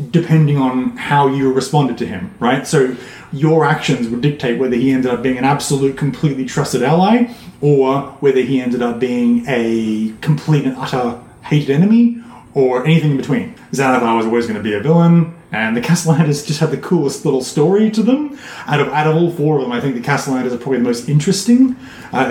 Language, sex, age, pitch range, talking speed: English, male, 30-49, 130-160 Hz, 205 wpm